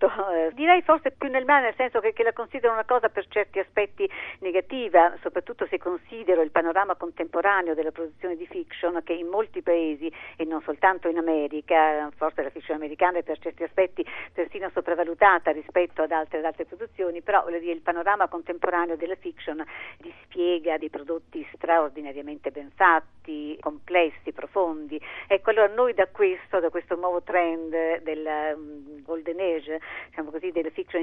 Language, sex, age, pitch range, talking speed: Italian, female, 50-69, 155-190 Hz, 160 wpm